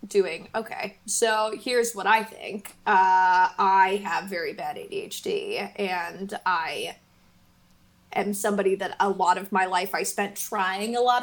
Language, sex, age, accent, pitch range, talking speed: English, female, 20-39, American, 195-235 Hz, 150 wpm